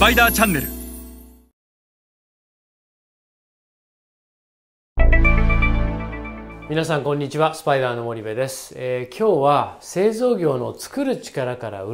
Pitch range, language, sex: 115-155 Hz, Japanese, male